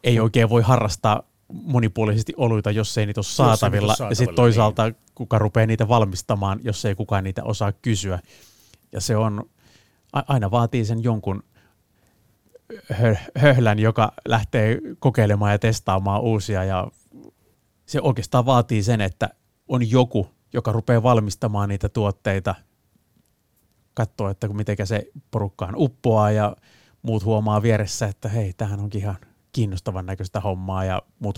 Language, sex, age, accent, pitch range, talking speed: Finnish, male, 30-49, native, 100-115 Hz, 140 wpm